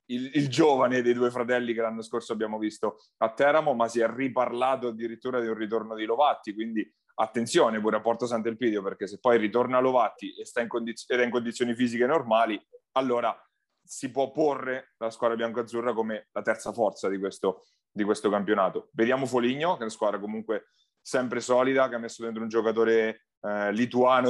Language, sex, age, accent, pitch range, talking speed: Italian, male, 30-49, native, 110-130 Hz, 180 wpm